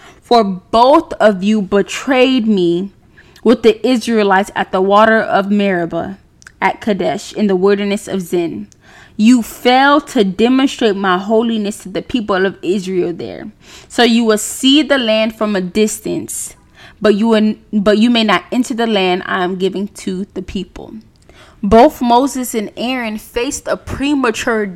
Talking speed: 160 wpm